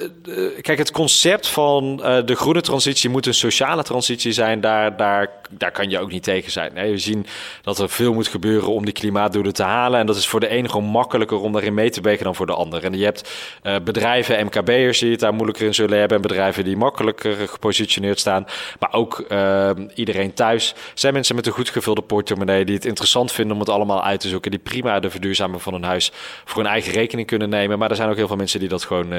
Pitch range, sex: 100-120 Hz, male